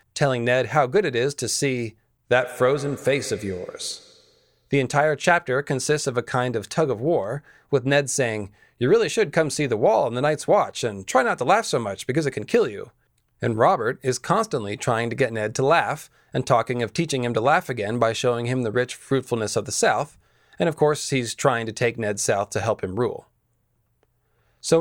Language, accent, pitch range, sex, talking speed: English, American, 120-145 Hz, male, 220 wpm